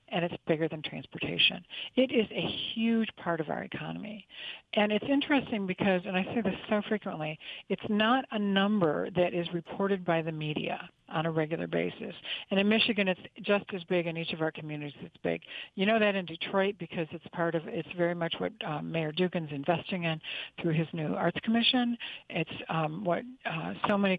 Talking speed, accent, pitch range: 200 wpm, American, 165-205 Hz